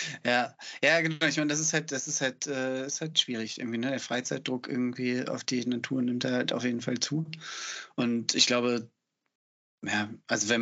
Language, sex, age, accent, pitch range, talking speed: German, male, 30-49, German, 110-125 Hz, 205 wpm